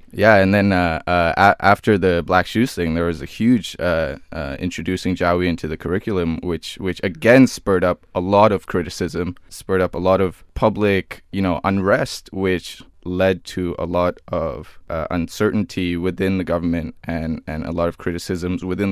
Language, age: English, 20-39